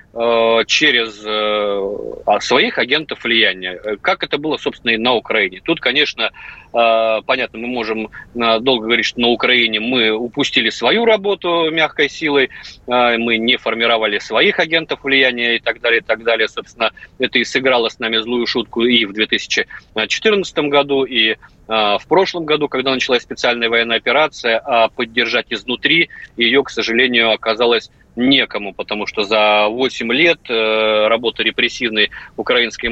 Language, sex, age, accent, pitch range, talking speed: Russian, male, 30-49, native, 110-135 Hz, 140 wpm